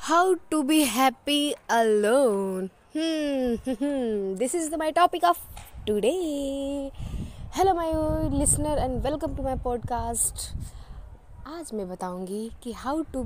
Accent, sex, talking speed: native, female, 125 wpm